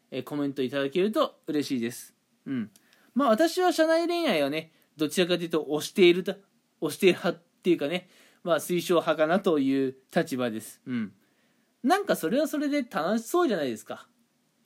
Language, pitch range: Japanese, 155-245 Hz